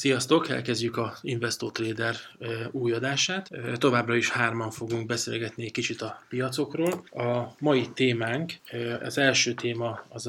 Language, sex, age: Hungarian, male, 20-39